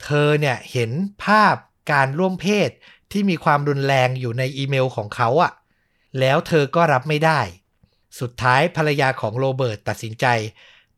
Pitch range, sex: 120-155 Hz, male